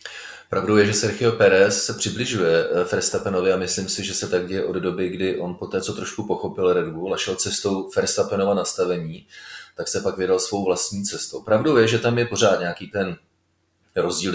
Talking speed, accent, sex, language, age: 190 wpm, native, male, Czech, 30-49